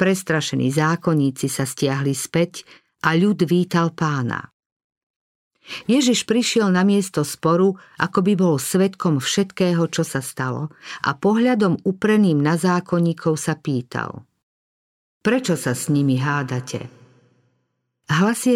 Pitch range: 150-185 Hz